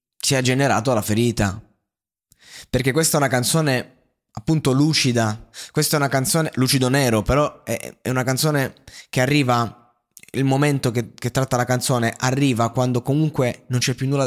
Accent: native